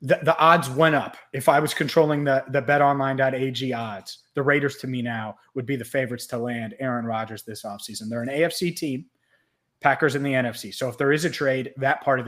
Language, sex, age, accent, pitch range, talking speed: English, male, 30-49, American, 130-150 Hz, 225 wpm